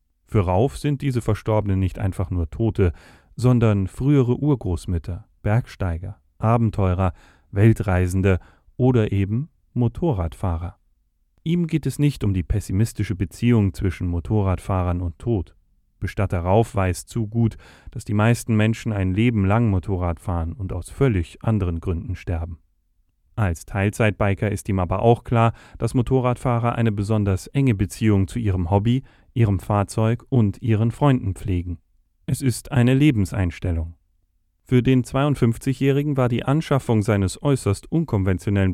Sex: male